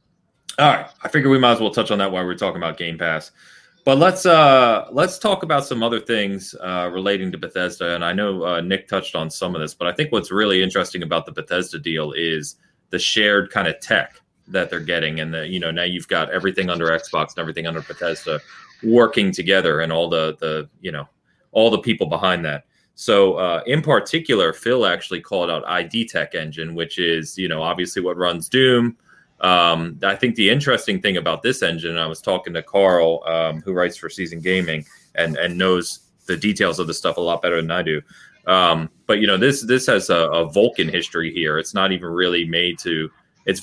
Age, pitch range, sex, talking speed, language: 30-49, 80-100 Hz, male, 215 wpm, English